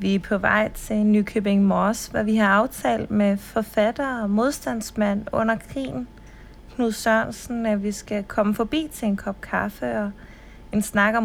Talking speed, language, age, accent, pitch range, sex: 170 wpm, Danish, 30-49, native, 200-225 Hz, female